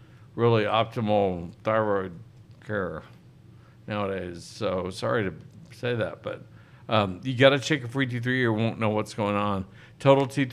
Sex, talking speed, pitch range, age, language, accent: male, 160 wpm, 105-120 Hz, 60-79, English, American